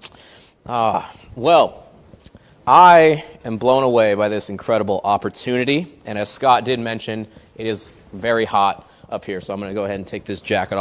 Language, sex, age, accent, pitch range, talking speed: English, male, 20-39, American, 120-170 Hz, 170 wpm